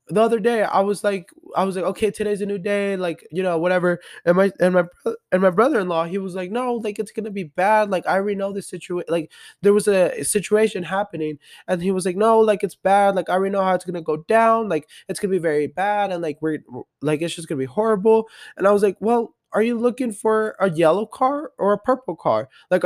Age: 20-39